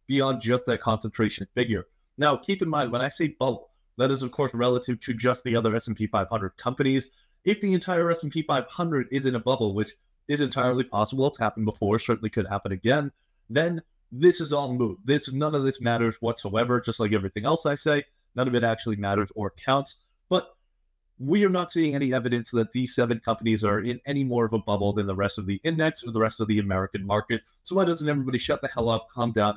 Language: English